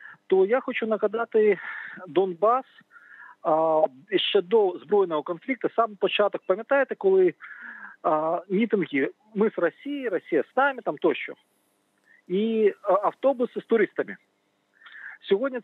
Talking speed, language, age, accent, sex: 115 wpm, Ukrainian, 40-59, native, male